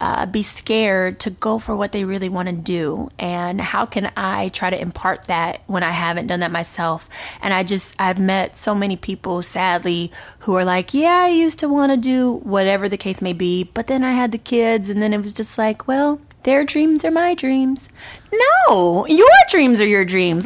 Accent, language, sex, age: American, English, female, 20-39